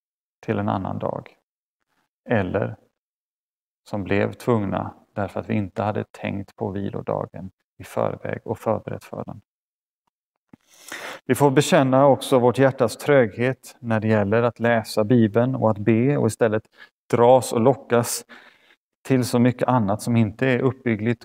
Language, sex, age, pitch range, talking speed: Swedish, male, 30-49, 105-125 Hz, 145 wpm